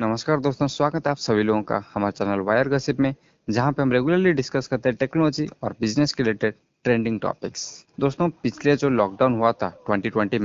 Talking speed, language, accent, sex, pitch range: 195 wpm, Hindi, native, male, 115-160 Hz